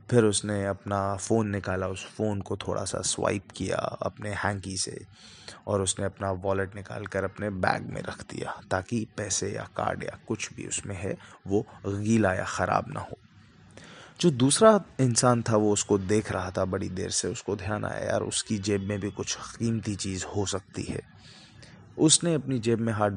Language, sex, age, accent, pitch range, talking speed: Hindi, male, 20-39, native, 100-125 Hz, 185 wpm